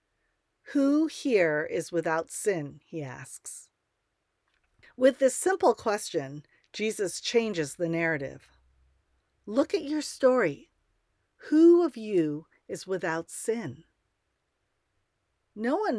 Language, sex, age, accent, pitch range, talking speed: English, female, 50-69, American, 165-220 Hz, 100 wpm